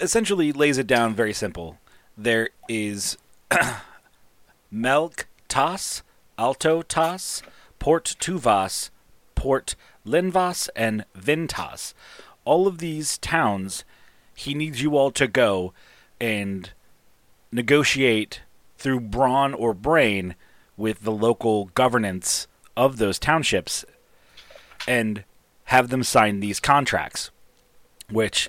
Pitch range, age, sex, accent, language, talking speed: 100-135 Hz, 30-49, male, American, English, 95 wpm